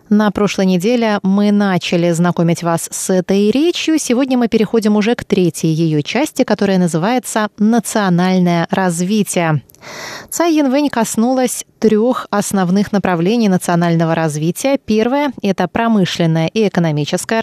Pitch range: 170-235 Hz